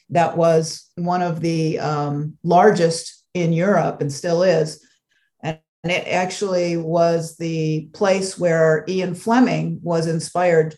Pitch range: 160-180 Hz